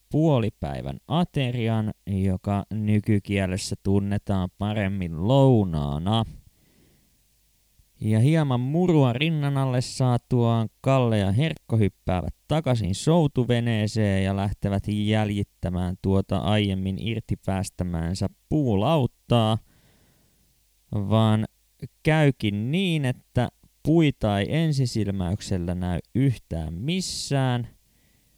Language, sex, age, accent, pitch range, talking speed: Finnish, male, 20-39, native, 95-125 Hz, 75 wpm